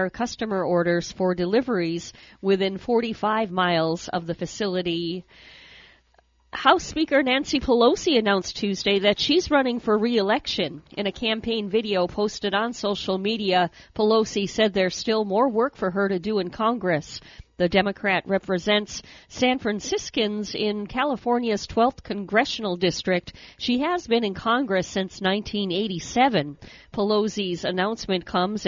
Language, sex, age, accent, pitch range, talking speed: English, female, 50-69, American, 185-230 Hz, 130 wpm